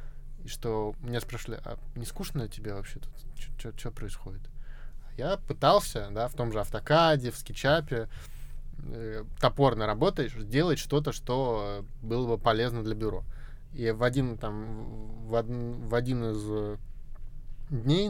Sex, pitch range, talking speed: male, 110-140 Hz, 125 wpm